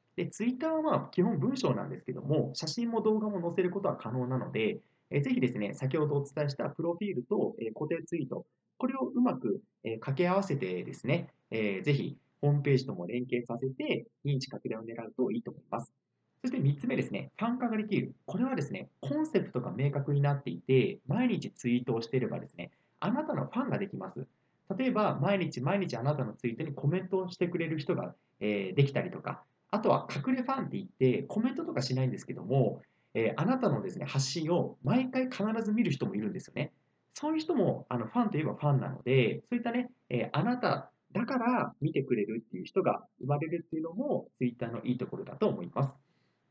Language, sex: Japanese, male